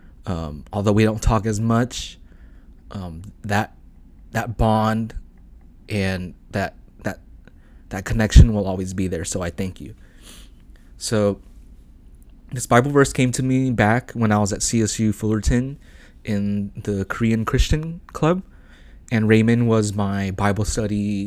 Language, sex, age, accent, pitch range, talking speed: English, male, 20-39, American, 85-120 Hz, 140 wpm